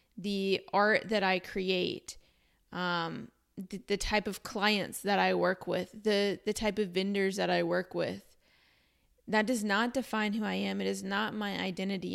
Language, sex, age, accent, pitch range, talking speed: English, female, 20-39, American, 175-200 Hz, 180 wpm